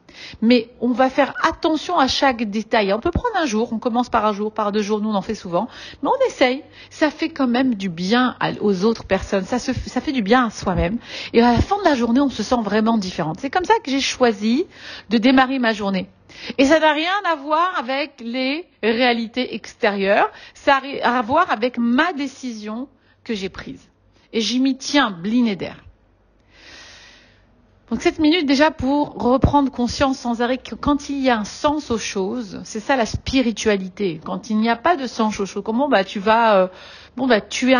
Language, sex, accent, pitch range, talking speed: French, female, French, 215-270 Hz, 215 wpm